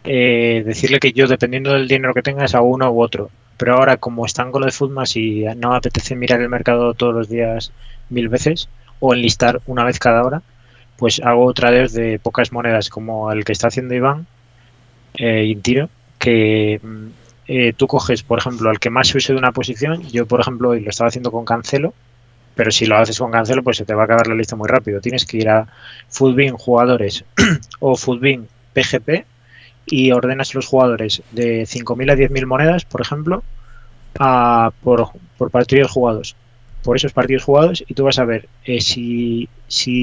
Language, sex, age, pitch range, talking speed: Spanish, male, 20-39, 115-130 Hz, 195 wpm